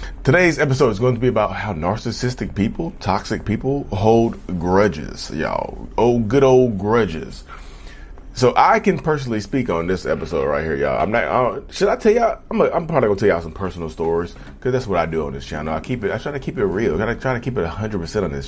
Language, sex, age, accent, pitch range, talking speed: English, male, 30-49, American, 85-115 Hz, 235 wpm